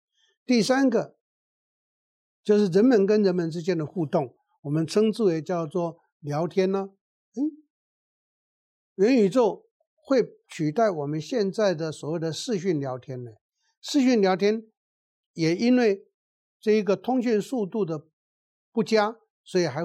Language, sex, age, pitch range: Chinese, male, 60-79, 150-215 Hz